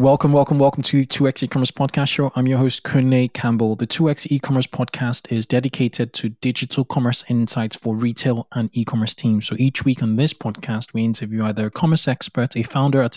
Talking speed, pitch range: 200 wpm, 115-135 Hz